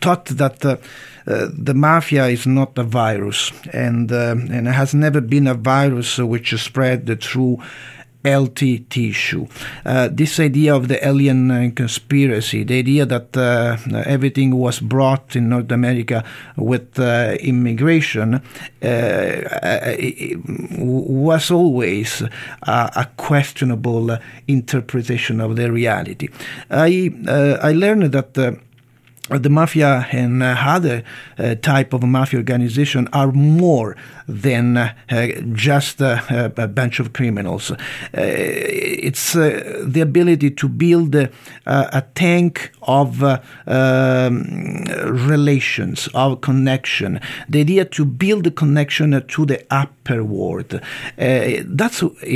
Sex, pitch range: male, 125-145 Hz